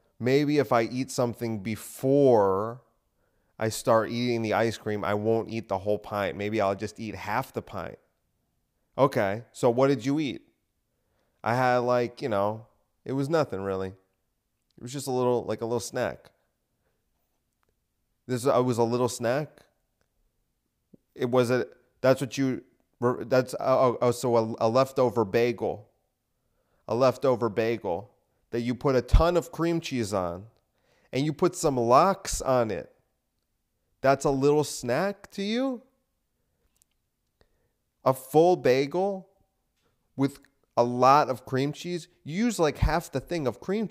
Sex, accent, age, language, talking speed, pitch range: male, American, 30-49, English, 150 wpm, 115-150 Hz